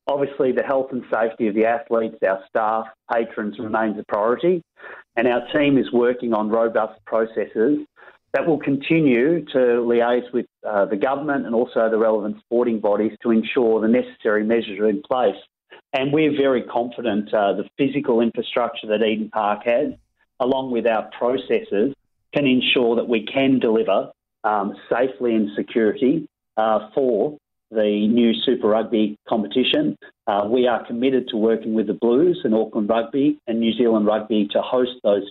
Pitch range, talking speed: 110-125 Hz, 165 wpm